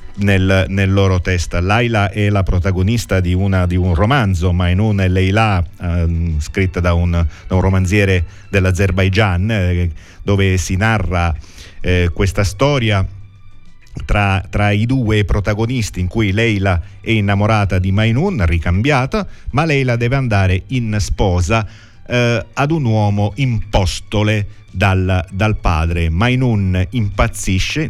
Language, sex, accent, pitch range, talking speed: Italian, male, native, 85-105 Hz, 120 wpm